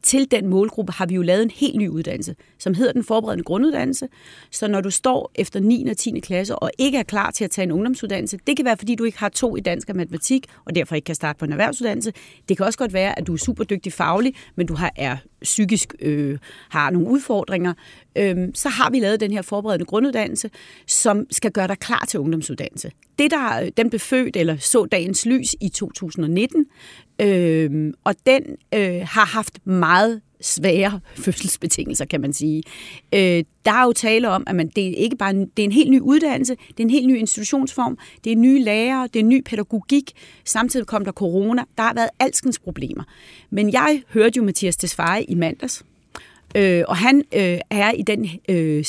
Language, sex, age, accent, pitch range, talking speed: Danish, female, 30-49, native, 185-250 Hz, 205 wpm